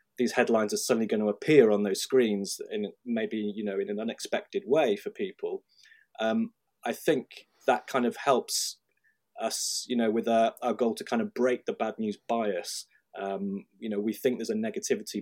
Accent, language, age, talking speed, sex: British, English, 20-39, 195 wpm, male